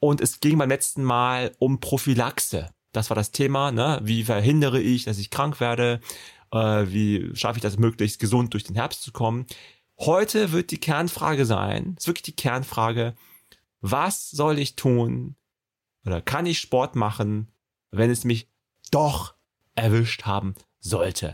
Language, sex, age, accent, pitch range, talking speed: German, male, 30-49, German, 110-135 Hz, 155 wpm